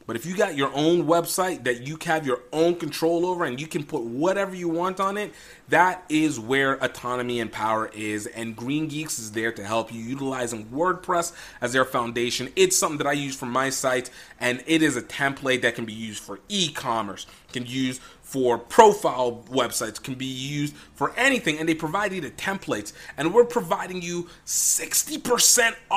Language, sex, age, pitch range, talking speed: English, male, 30-49, 125-185 Hz, 195 wpm